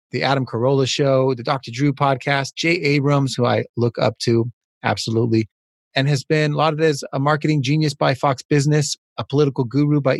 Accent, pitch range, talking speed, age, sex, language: American, 120-150 Hz, 200 wpm, 30-49, male, English